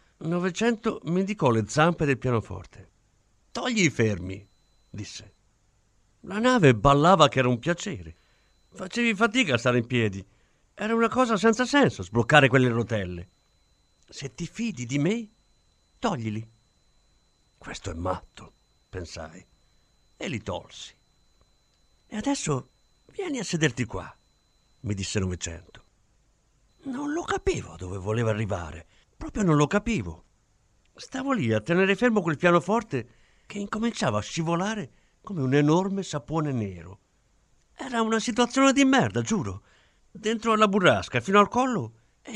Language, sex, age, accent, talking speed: Italian, male, 50-69, native, 130 wpm